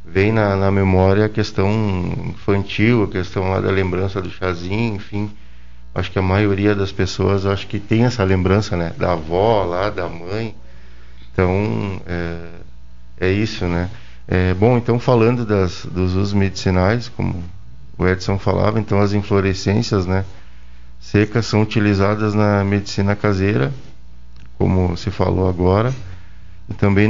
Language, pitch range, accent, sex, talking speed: Portuguese, 90-105 Hz, Brazilian, male, 140 wpm